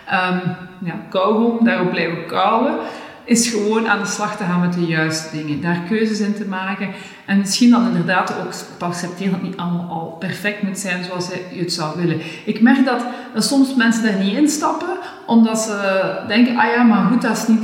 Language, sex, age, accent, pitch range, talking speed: Dutch, female, 40-59, Dutch, 180-235 Hz, 205 wpm